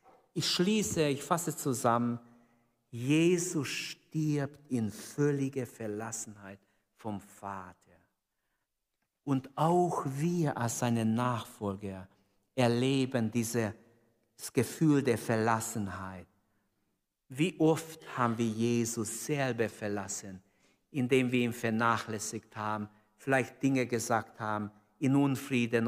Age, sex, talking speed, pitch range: 50-69, male, 95 wpm, 110-170 Hz